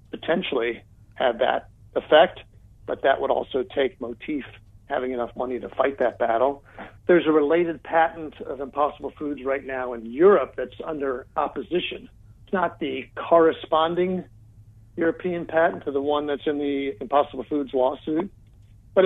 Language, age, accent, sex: English, 50-69, American, male